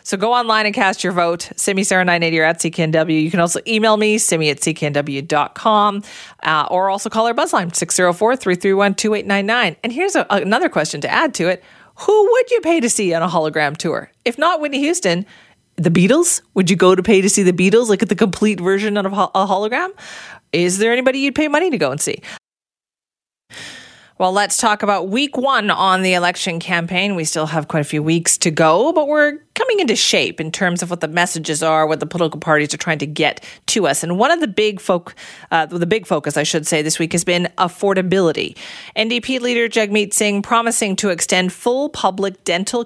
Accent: American